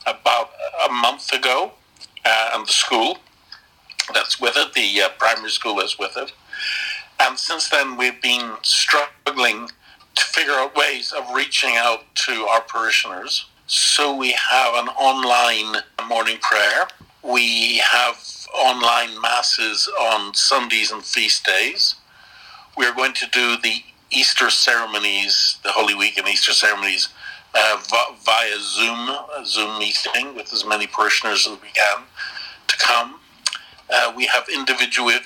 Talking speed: 140 wpm